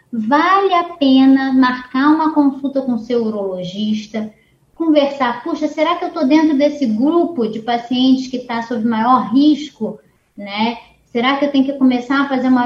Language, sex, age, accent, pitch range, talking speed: Portuguese, female, 20-39, Brazilian, 225-270 Hz, 165 wpm